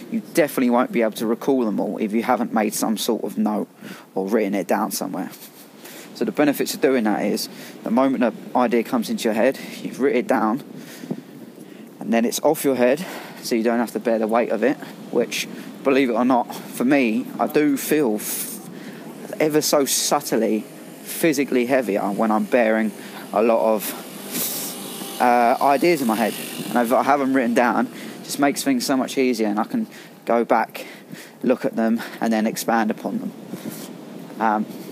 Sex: male